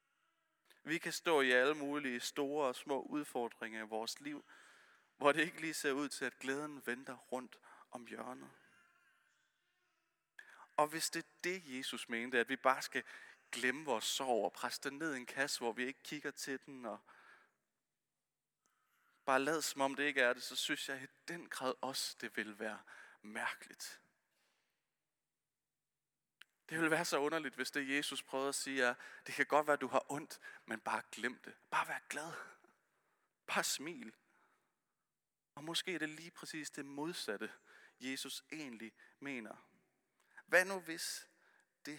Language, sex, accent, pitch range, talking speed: Danish, male, native, 130-160 Hz, 165 wpm